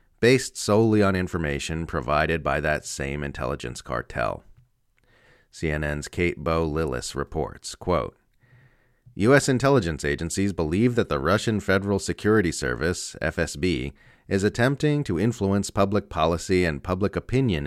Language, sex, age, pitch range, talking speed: English, male, 40-59, 85-120 Hz, 120 wpm